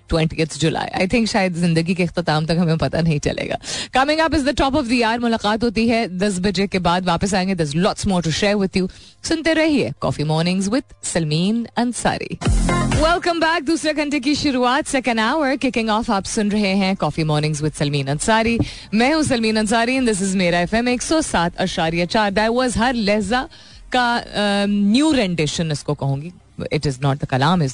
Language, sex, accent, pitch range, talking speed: Hindi, female, native, 160-225 Hz, 145 wpm